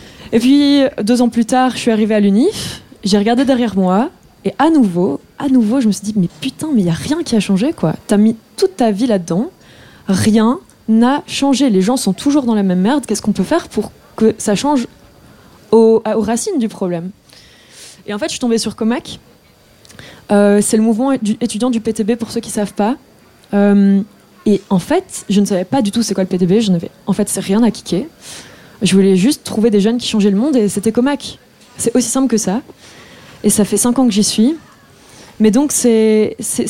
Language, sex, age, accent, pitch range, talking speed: French, female, 20-39, French, 205-250 Hz, 220 wpm